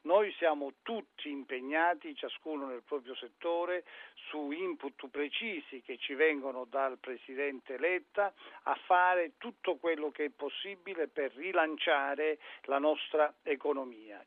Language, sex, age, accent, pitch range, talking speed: Italian, male, 50-69, native, 140-190 Hz, 120 wpm